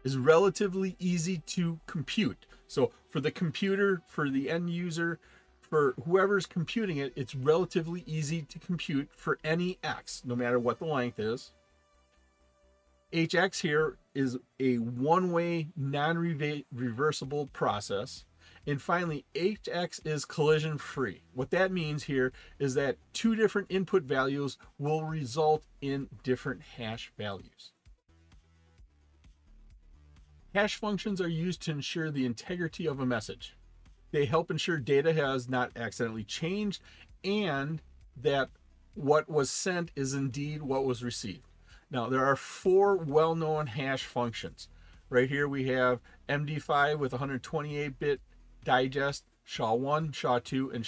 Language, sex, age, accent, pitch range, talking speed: English, male, 40-59, American, 120-165 Hz, 125 wpm